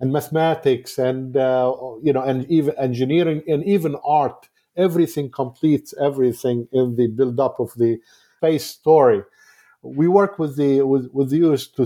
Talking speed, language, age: 150 wpm, English, 50-69